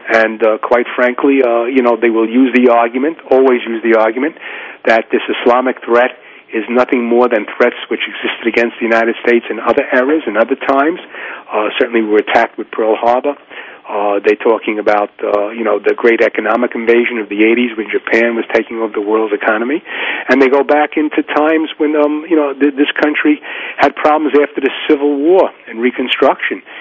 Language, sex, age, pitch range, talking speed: English, male, 40-59, 115-140 Hz, 195 wpm